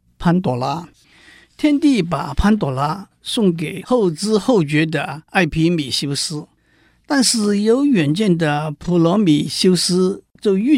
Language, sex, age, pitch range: Chinese, male, 50-69, 145-185 Hz